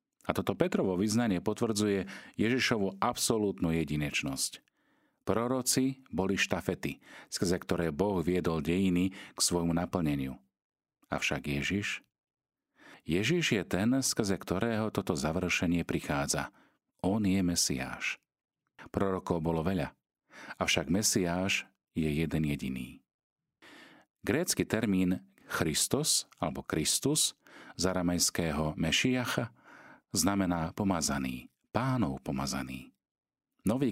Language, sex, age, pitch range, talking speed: Slovak, male, 40-59, 80-100 Hz, 95 wpm